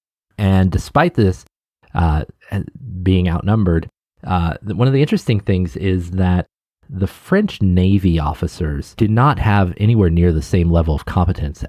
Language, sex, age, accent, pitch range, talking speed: English, male, 30-49, American, 85-105 Hz, 145 wpm